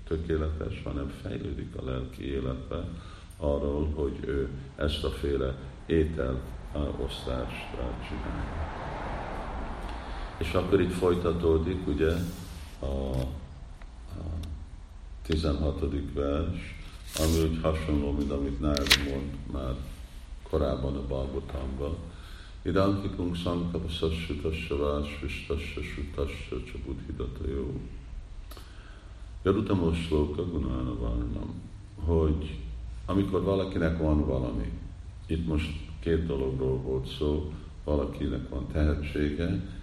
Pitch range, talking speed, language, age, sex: 70-85 Hz, 85 wpm, Hungarian, 50-69, male